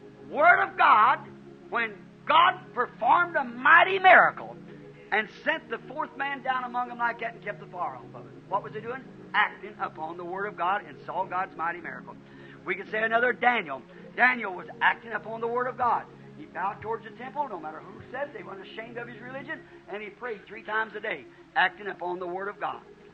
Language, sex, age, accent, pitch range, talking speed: English, male, 50-69, American, 205-300 Hz, 210 wpm